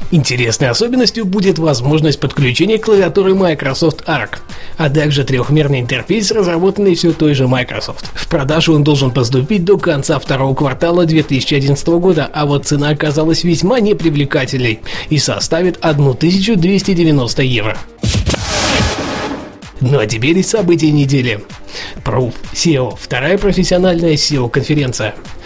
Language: Russian